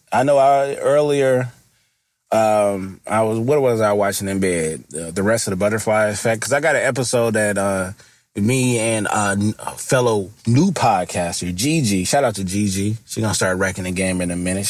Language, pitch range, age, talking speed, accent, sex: English, 95-115 Hz, 30-49, 195 wpm, American, male